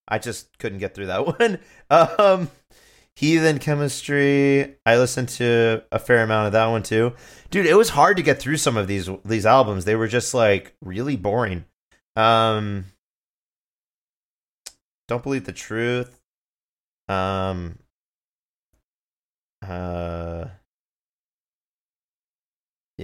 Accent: American